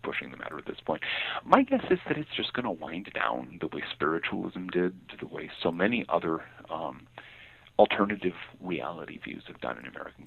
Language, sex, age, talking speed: English, male, 40-59, 200 wpm